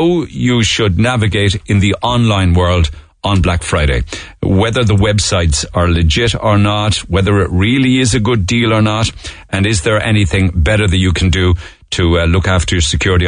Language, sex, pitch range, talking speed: English, male, 85-105 Hz, 190 wpm